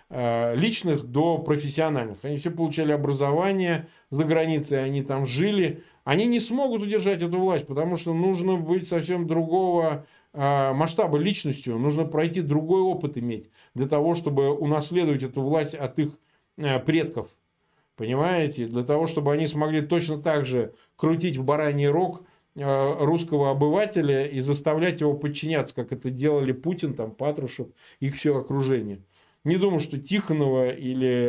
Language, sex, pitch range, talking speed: Russian, male, 130-165 Hz, 140 wpm